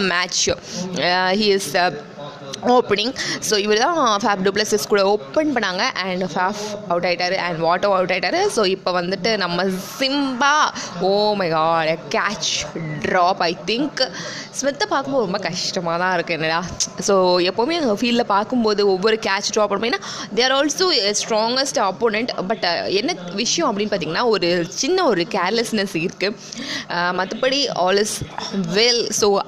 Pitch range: 180-225 Hz